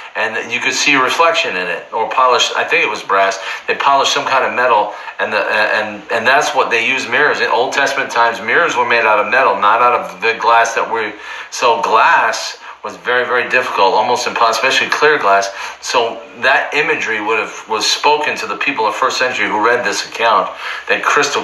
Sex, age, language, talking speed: male, 40-59, English, 210 wpm